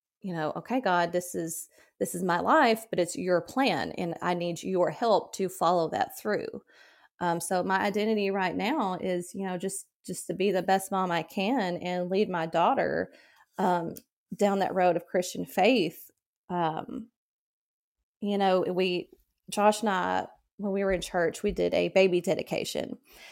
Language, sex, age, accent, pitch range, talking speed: English, female, 30-49, American, 180-205 Hz, 180 wpm